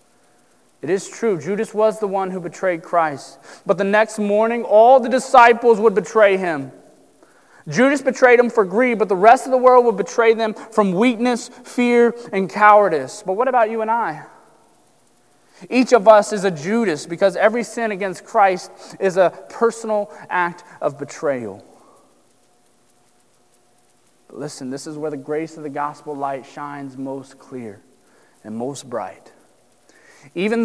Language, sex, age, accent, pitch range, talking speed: English, male, 30-49, American, 155-220 Hz, 155 wpm